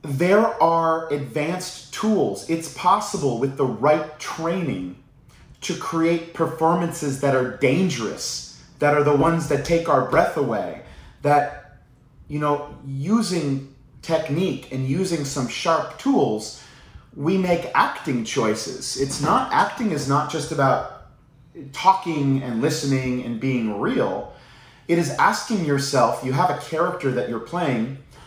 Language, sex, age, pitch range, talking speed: English, male, 30-49, 135-170 Hz, 135 wpm